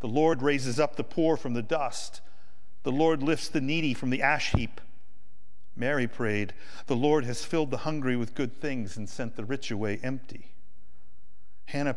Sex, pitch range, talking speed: male, 95-135 Hz, 180 wpm